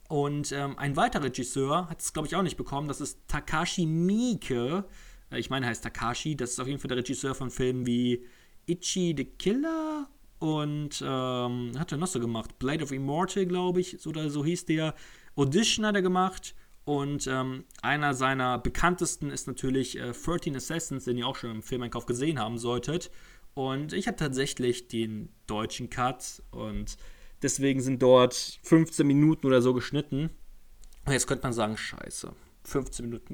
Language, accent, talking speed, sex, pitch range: German, German, 175 wpm, male, 125-160 Hz